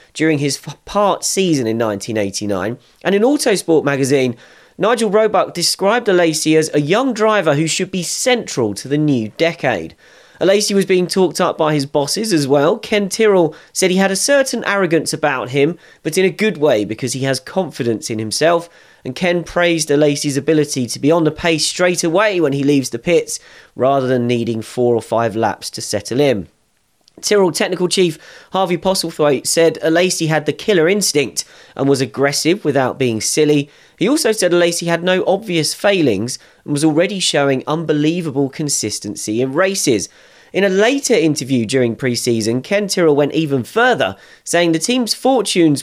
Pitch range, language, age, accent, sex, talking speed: 135-185 Hz, English, 30-49, British, male, 175 wpm